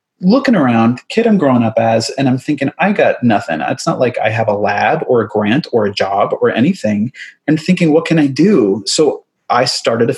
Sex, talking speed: male, 230 wpm